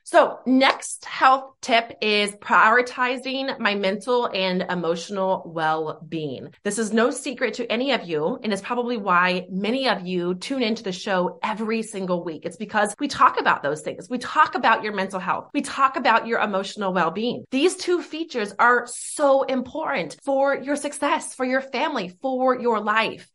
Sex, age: female, 20-39